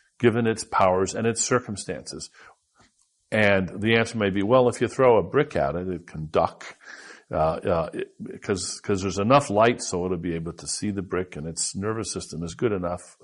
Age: 50-69